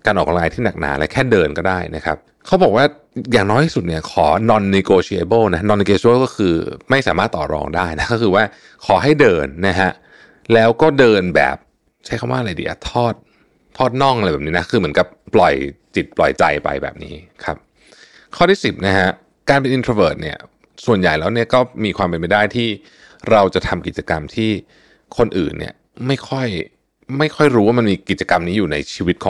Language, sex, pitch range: Thai, male, 85-125 Hz